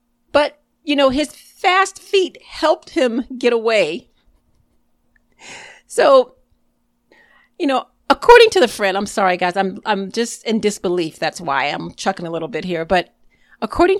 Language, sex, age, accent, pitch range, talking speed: English, female, 40-59, American, 185-260 Hz, 145 wpm